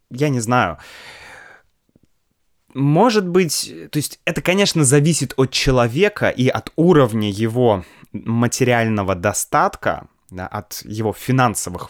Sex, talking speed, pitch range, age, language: male, 110 wpm, 100-140 Hz, 20-39, Russian